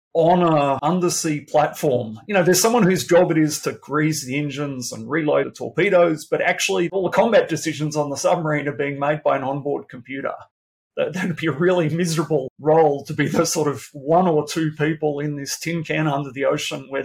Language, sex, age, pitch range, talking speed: English, male, 30-49, 140-175 Hz, 210 wpm